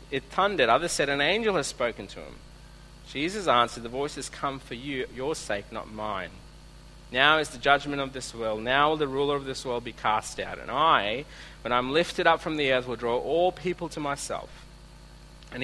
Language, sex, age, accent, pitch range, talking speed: English, male, 40-59, Australian, 115-150 Hz, 210 wpm